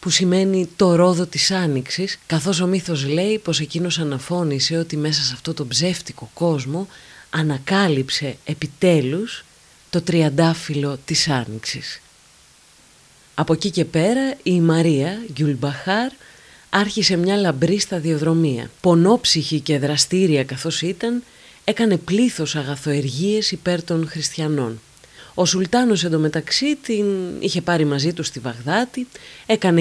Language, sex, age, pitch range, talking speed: Greek, female, 30-49, 150-190 Hz, 120 wpm